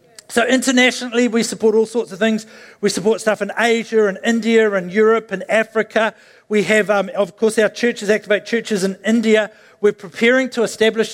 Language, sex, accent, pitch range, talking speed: English, male, Australian, 205-240 Hz, 195 wpm